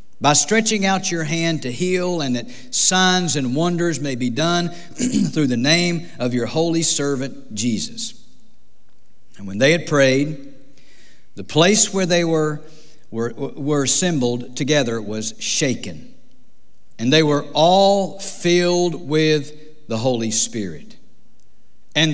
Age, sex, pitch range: 50-69, male, 120-165 Hz